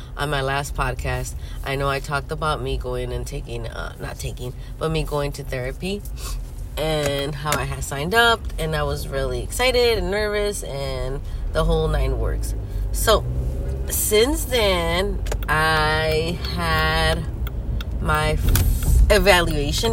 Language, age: English, 30-49